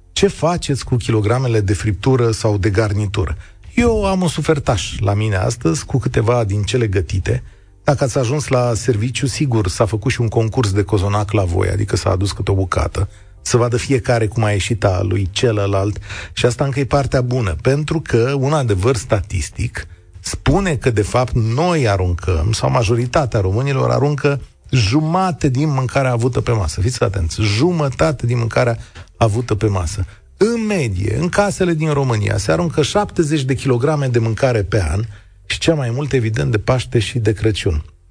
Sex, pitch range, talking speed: male, 100-135 Hz, 175 wpm